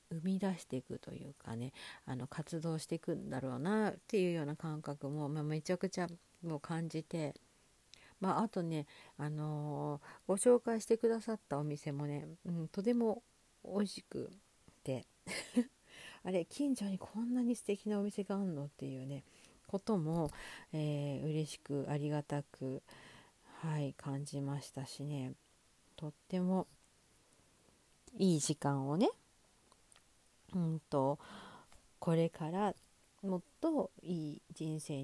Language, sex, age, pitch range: Japanese, female, 50-69, 145-190 Hz